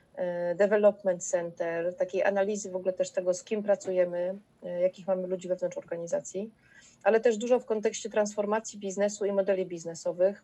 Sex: female